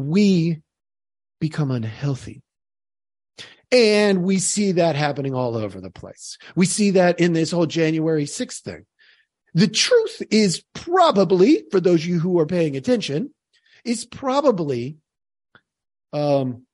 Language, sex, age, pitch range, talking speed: English, male, 40-59, 140-205 Hz, 130 wpm